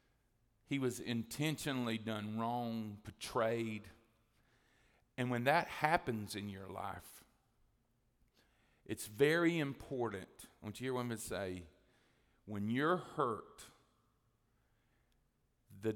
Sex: male